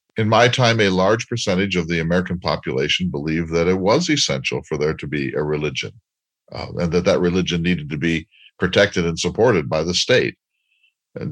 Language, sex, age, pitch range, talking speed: English, male, 50-69, 85-100 Hz, 190 wpm